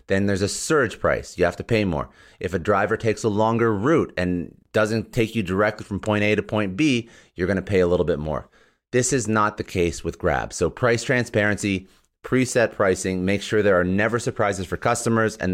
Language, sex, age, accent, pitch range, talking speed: English, male, 30-49, American, 90-110 Hz, 220 wpm